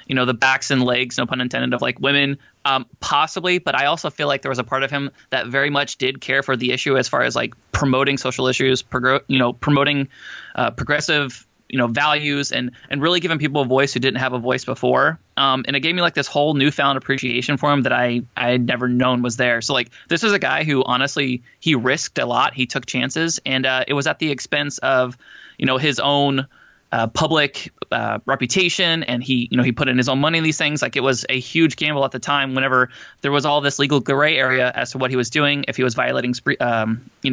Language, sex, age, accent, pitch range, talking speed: English, male, 20-39, American, 125-145 Hz, 250 wpm